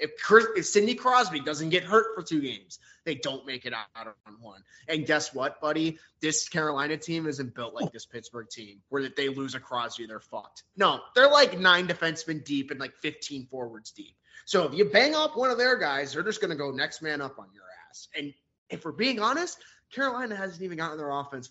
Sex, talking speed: male, 225 wpm